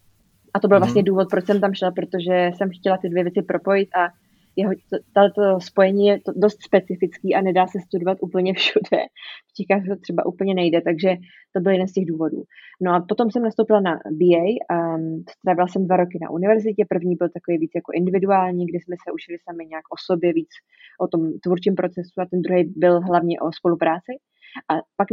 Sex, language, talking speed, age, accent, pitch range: female, Czech, 205 wpm, 20-39, native, 175-195 Hz